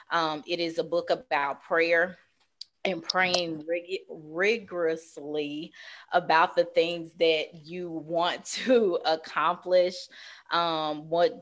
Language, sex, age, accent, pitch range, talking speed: English, female, 20-39, American, 145-170 Hz, 105 wpm